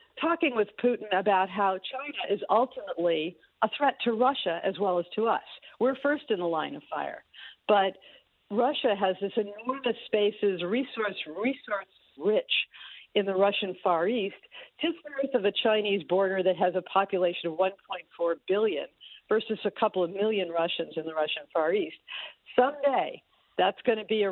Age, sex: 50-69, female